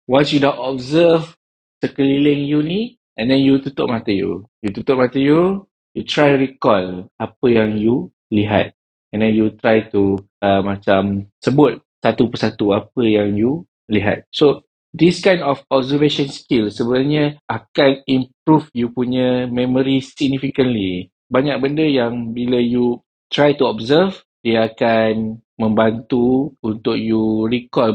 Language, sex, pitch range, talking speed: Malay, male, 110-135 Hz, 140 wpm